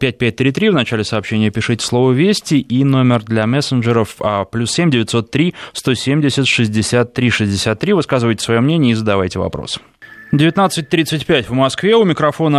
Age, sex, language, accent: 20-39, male, Russian, native